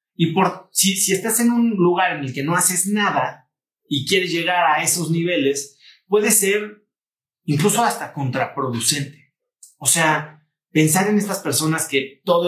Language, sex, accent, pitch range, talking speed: Spanish, male, Mexican, 140-185 Hz, 160 wpm